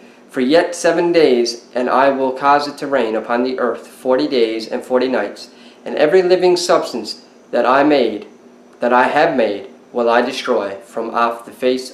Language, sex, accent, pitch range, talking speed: English, male, American, 120-150 Hz, 185 wpm